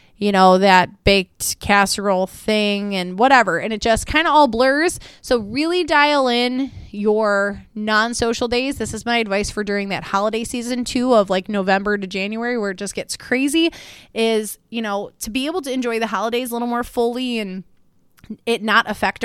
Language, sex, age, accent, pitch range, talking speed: English, female, 20-39, American, 205-260 Hz, 185 wpm